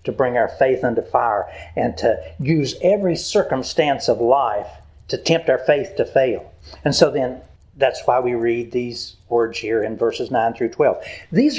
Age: 60-79